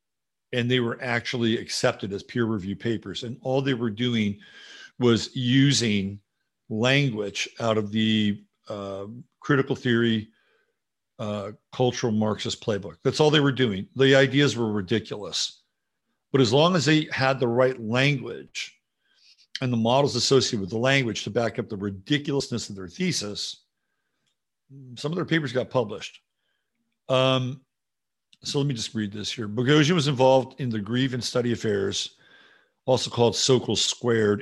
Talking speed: 150 wpm